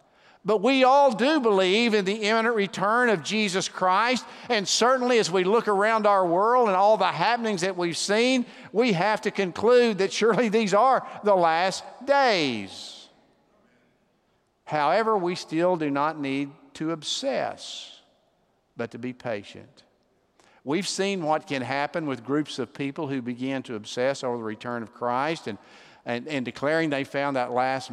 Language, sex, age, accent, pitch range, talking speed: English, male, 50-69, American, 125-195 Hz, 165 wpm